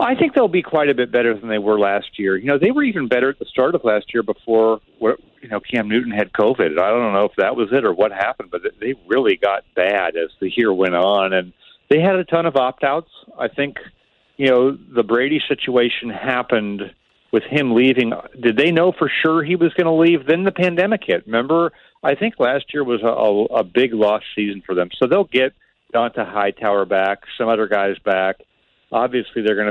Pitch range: 105-150 Hz